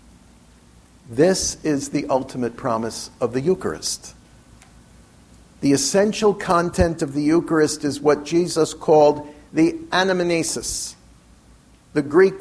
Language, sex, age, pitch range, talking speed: English, male, 50-69, 140-180 Hz, 105 wpm